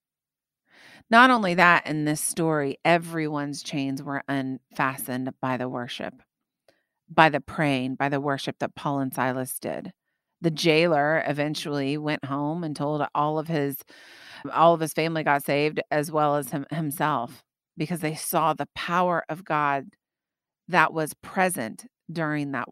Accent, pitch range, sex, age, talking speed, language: American, 145-175 Hz, female, 30-49, 150 wpm, English